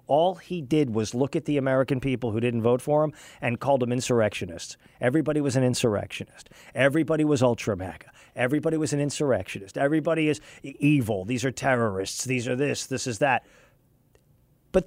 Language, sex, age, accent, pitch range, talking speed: English, male, 40-59, American, 135-185 Hz, 170 wpm